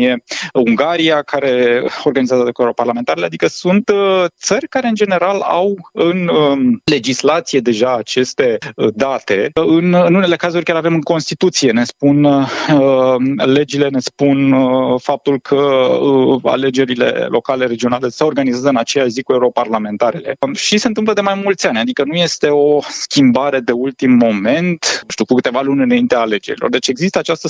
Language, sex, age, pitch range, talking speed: Romanian, male, 20-39, 130-175 Hz, 140 wpm